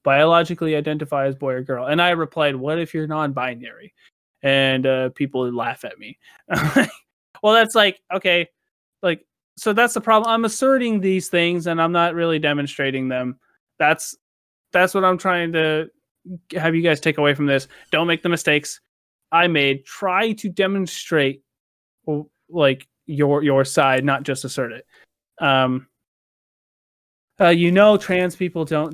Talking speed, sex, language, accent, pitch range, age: 155 wpm, male, English, American, 135-175 Hz, 20-39